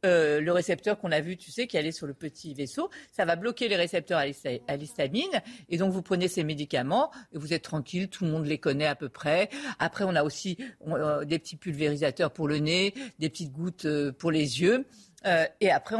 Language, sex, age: French, female, 50-69